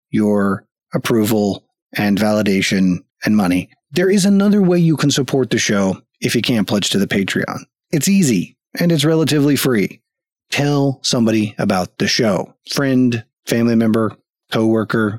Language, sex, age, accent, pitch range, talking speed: English, male, 30-49, American, 105-155 Hz, 145 wpm